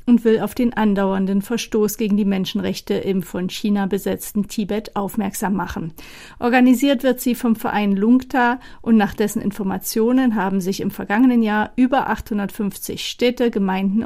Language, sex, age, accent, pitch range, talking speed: German, female, 40-59, German, 200-235 Hz, 150 wpm